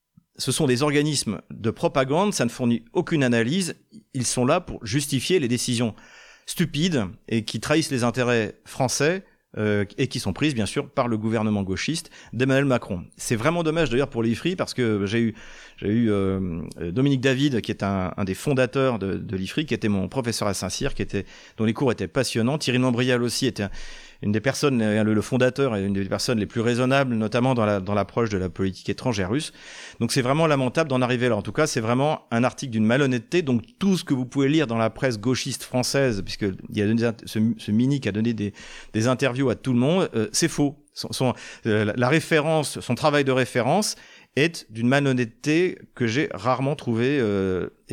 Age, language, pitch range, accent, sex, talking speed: 40-59, French, 110-140 Hz, French, male, 205 wpm